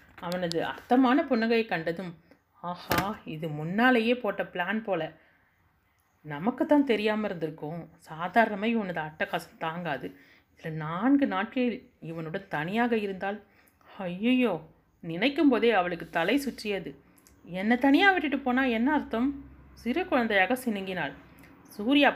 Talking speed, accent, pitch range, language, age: 105 wpm, native, 170-235 Hz, Tamil, 30-49